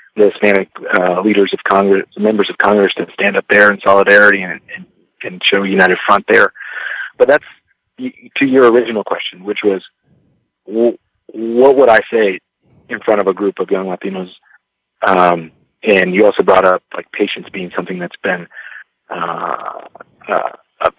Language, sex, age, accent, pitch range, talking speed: English, male, 40-59, American, 95-120 Hz, 160 wpm